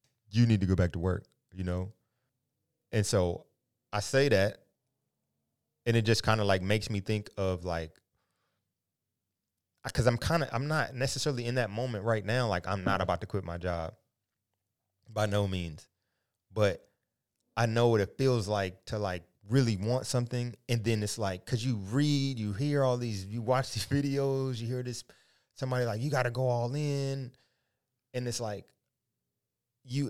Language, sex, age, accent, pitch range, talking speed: English, male, 20-39, American, 100-130 Hz, 180 wpm